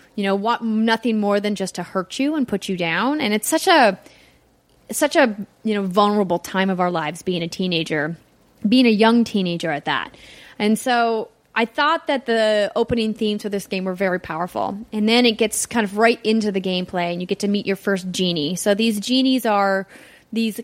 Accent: American